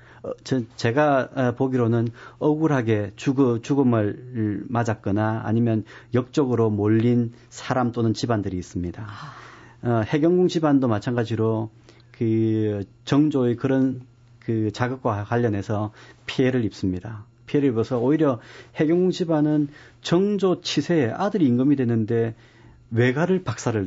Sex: male